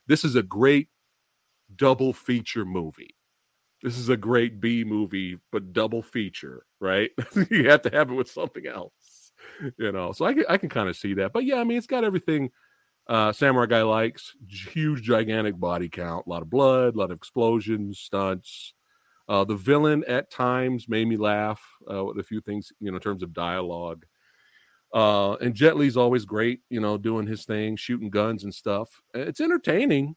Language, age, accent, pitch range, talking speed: English, 40-59, American, 105-150 Hz, 190 wpm